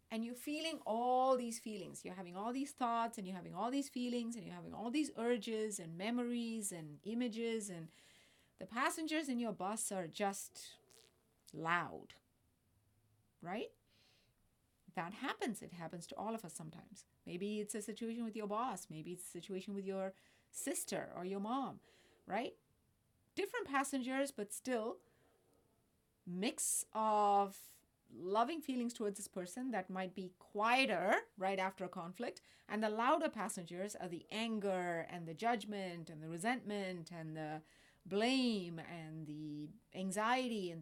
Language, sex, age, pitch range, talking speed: English, female, 30-49, 180-240 Hz, 150 wpm